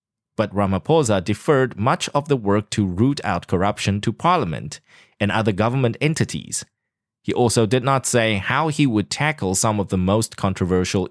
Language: English